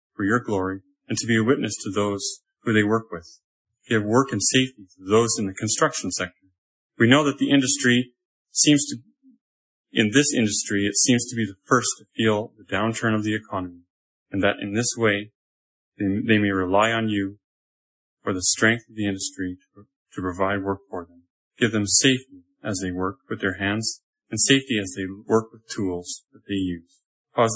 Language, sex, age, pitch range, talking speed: English, male, 30-49, 95-120 Hz, 195 wpm